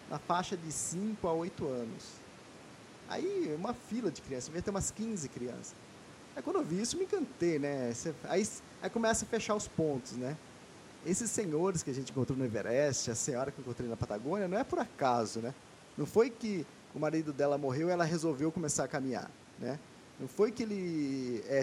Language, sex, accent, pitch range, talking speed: Portuguese, male, Brazilian, 130-190 Hz, 205 wpm